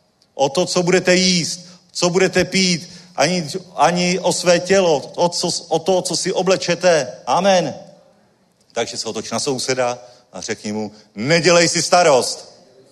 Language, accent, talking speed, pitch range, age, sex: Czech, native, 140 wpm, 145-190 Hz, 40-59, male